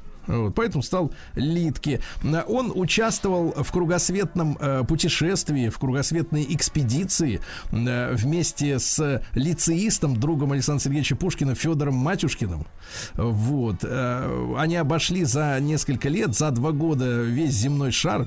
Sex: male